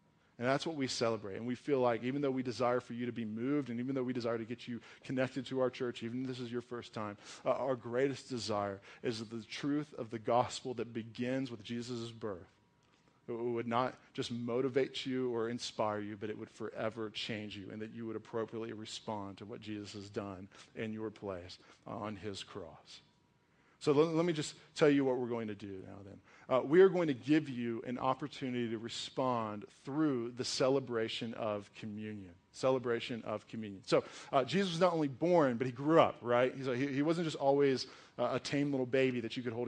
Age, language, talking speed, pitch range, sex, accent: 40-59, English, 215 wpm, 115-135 Hz, male, American